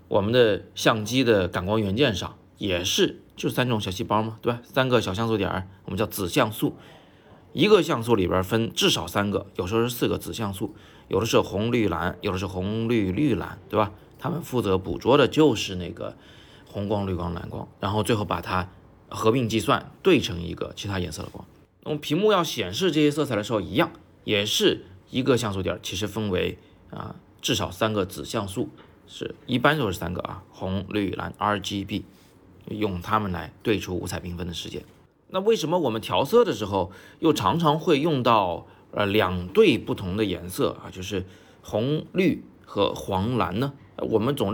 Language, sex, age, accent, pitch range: Chinese, male, 20-39, native, 95-135 Hz